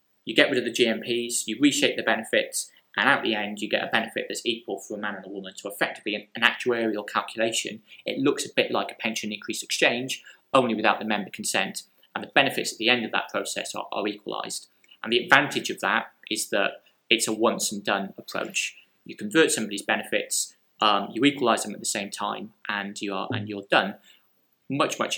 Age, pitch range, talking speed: 20-39, 105-120 Hz, 215 wpm